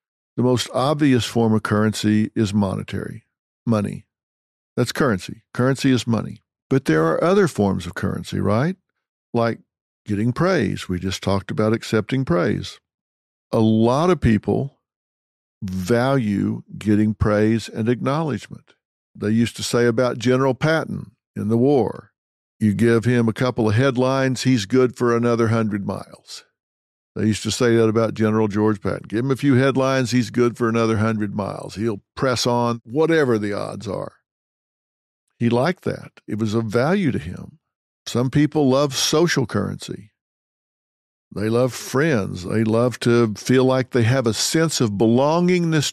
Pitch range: 105-130 Hz